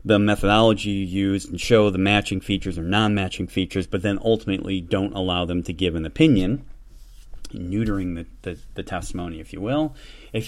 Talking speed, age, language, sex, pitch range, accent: 180 wpm, 30-49, English, male, 95-115 Hz, American